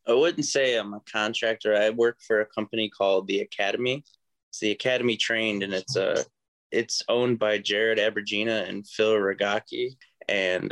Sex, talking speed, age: male, 170 wpm, 20-39